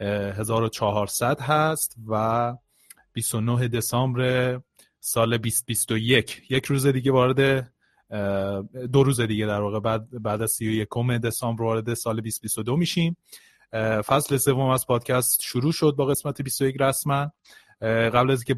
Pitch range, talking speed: 110-130 Hz, 120 wpm